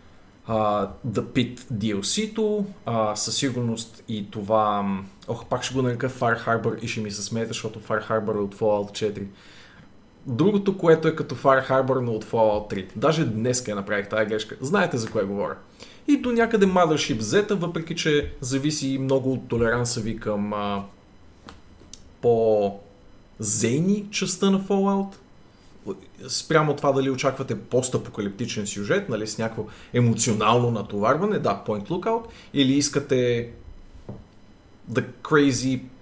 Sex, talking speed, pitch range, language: male, 140 wpm, 105-145 Hz, Bulgarian